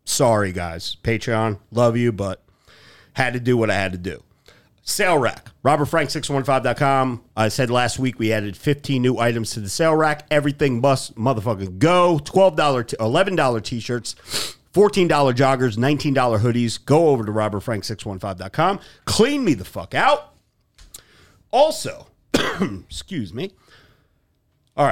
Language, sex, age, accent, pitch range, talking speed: English, male, 40-59, American, 110-145 Hz, 130 wpm